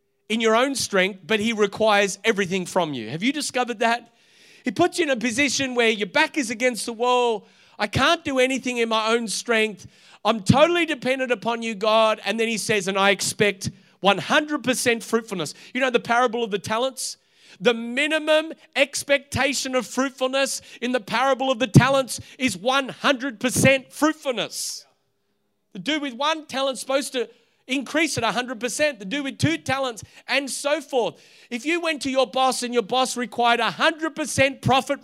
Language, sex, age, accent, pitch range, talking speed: English, male, 40-59, Australian, 220-270 Hz, 175 wpm